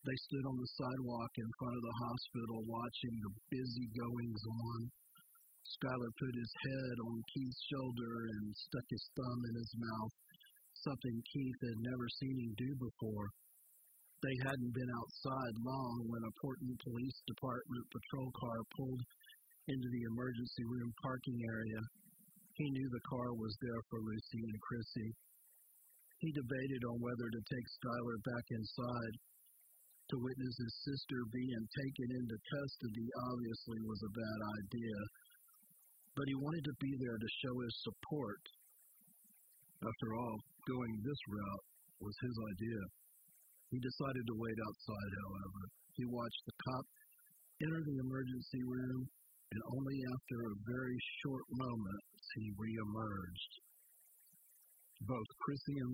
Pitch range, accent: 115-135 Hz, American